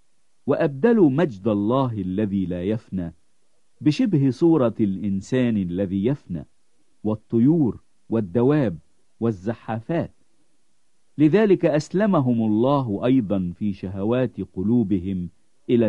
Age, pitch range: 50-69, 95-140 Hz